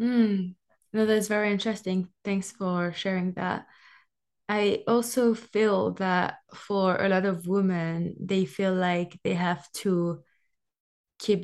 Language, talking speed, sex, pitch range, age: English, 130 wpm, female, 180-205 Hz, 20-39